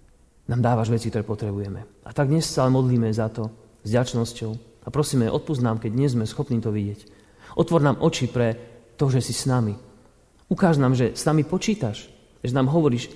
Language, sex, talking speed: Slovak, male, 185 wpm